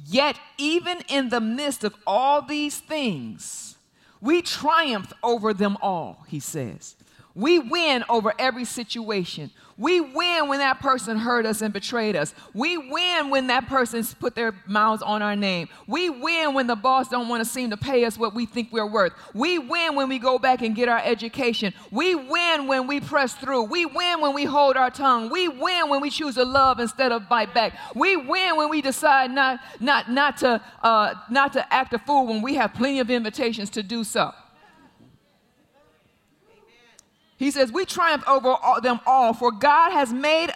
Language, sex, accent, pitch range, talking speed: English, female, American, 230-295 Hz, 190 wpm